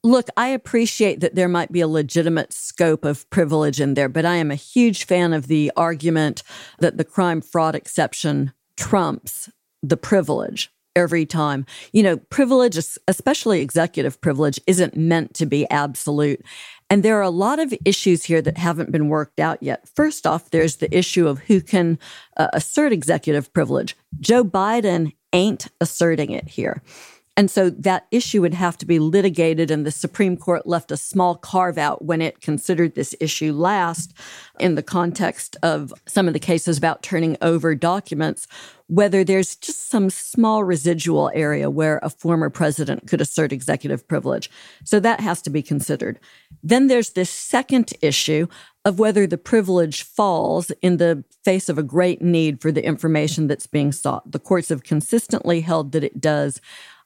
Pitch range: 155-190 Hz